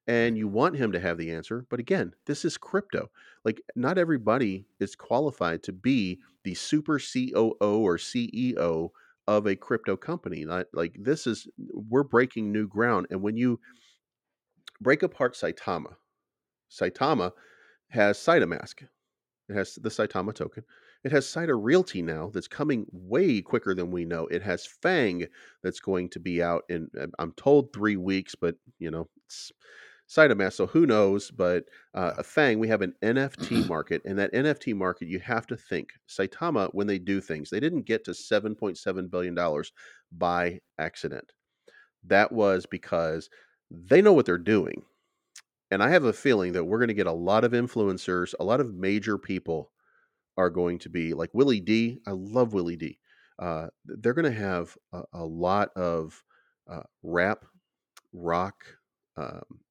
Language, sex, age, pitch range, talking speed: English, male, 40-59, 90-120 Hz, 170 wpm